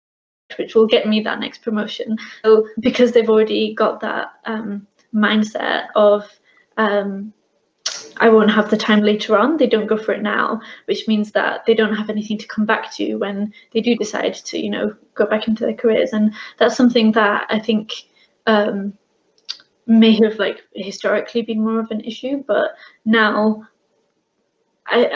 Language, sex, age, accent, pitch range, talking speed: English, female, 20-39, British, 215-225 Hz, 170 wpm